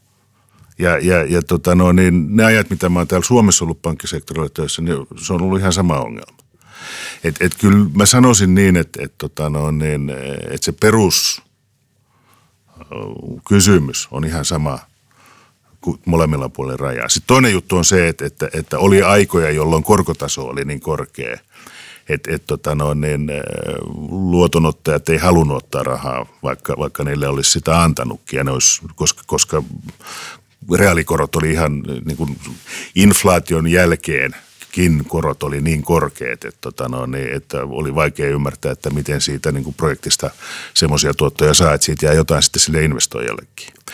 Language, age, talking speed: Finnish, 50-69, 150 wpm